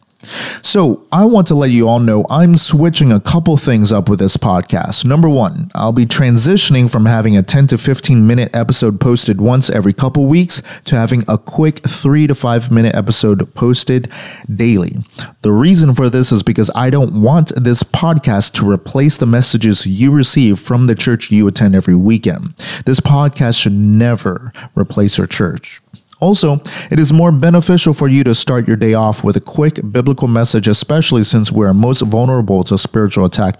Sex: male